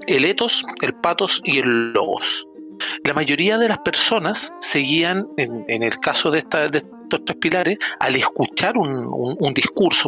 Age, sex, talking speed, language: 40-59, male, 175 wpm, Spanish